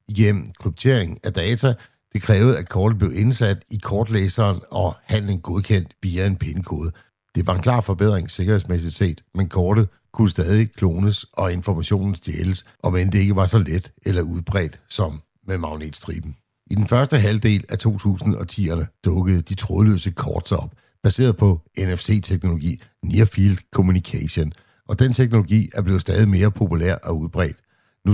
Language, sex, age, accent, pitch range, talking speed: Danish, male, 60-79, native, 90-110 Hz, 155 wpm